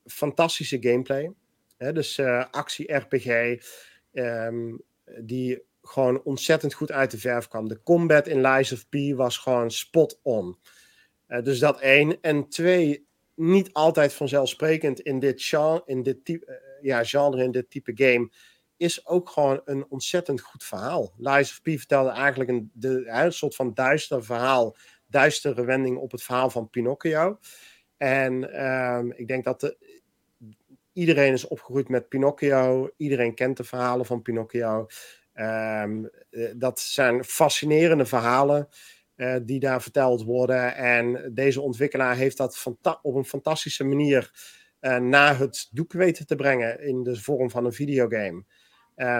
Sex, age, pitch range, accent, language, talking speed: male, 40-59, 125-145 Hz, Dutch, Dutch, 150 wpm